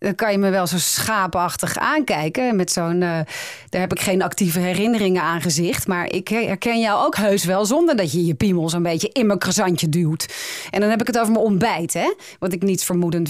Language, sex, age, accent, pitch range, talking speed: Dutch, female, 30-49, Dutch, 170-235 Hz, 225 wpm